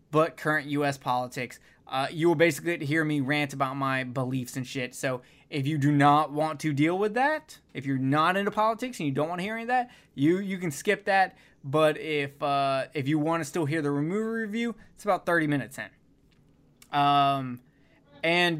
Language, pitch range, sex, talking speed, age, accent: English, 135-165 Hz, male, 210 wpm, 20-39, American